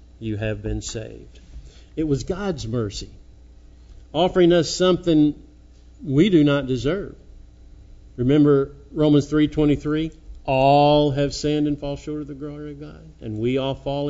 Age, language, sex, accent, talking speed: 50-69, English, male, American, 140 wpm